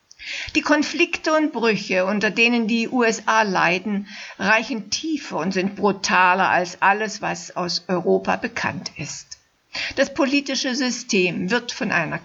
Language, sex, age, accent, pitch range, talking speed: German, female, 60-79, German, 190-250 Hz, 130 wpm